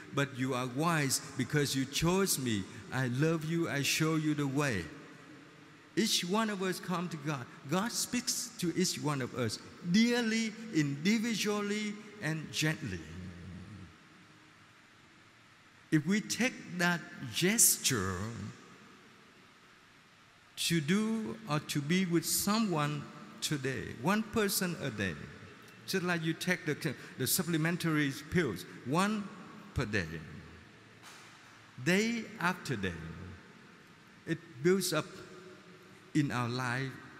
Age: 50-69